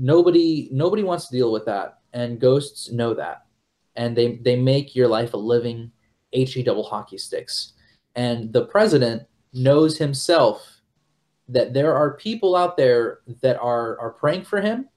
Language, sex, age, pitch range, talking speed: English, male, 20-39, 120-155 Hz, 160 wpm